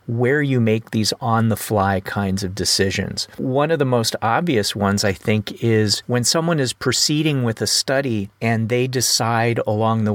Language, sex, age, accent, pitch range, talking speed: English, male, 40-59, American, 100-130 Hz, 170 wpm